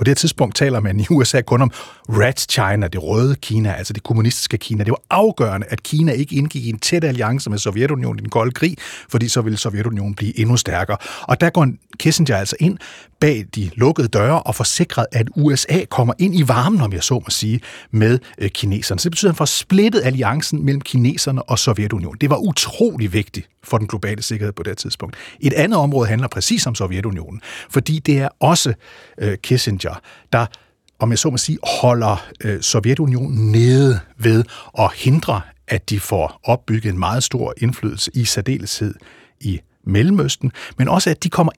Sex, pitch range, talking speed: male, 105-145 Hz, 190 wpm